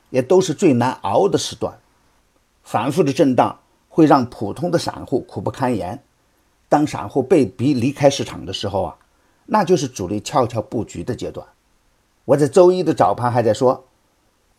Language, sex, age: Chinese, male, 50-69